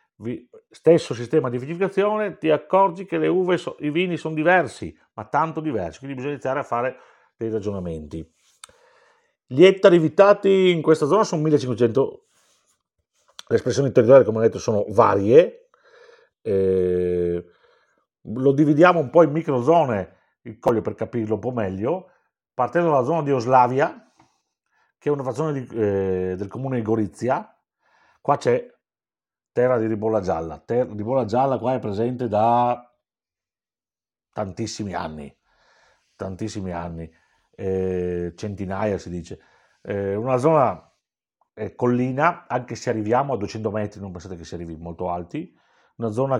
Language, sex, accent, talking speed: Italian, male, native, 145 wpm